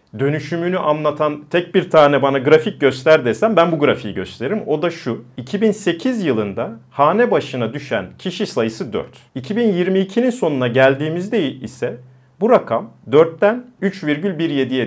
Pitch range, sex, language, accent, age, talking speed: 135-195 Hz, male, Turkish, native, 40-59, 130 wpm